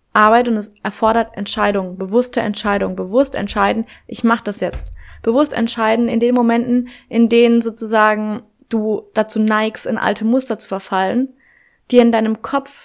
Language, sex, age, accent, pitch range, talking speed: German, female, 20-39, German, 215-255 Hz, 155 wpm